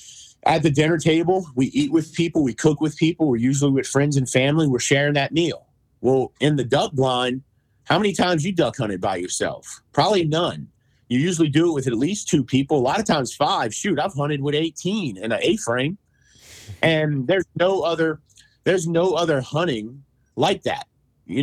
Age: 40-59